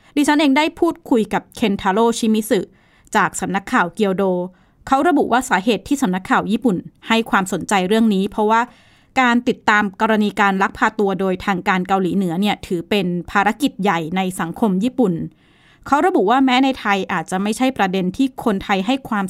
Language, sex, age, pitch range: Thai, female, 20-39, 190-235 Hz